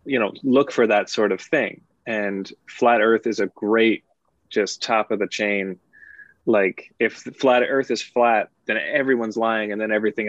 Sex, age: male, 20-39